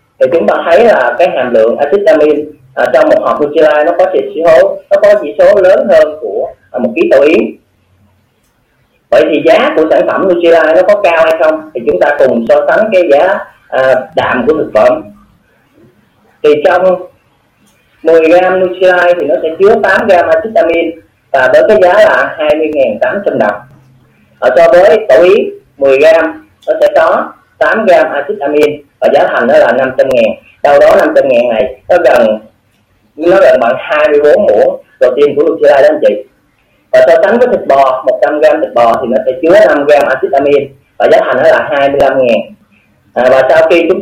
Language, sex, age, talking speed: Vietnamese, male, 30-49, 205 wpm